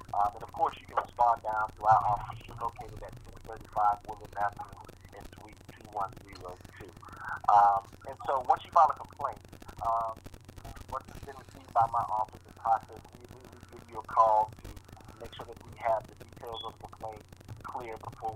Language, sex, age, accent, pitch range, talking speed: English, male, 30-49, American, 100-115 Hz, 175 wpm